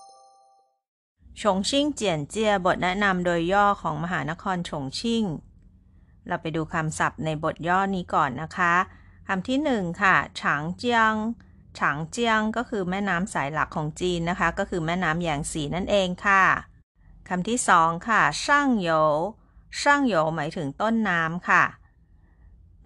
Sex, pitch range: female, 150-210 Hz